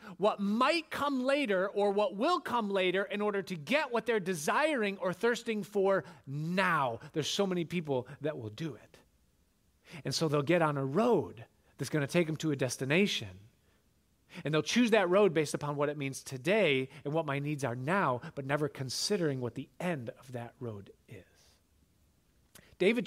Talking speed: 185 wpm